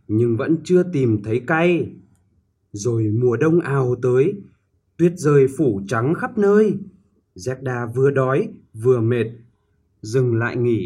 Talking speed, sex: 140 wpm, male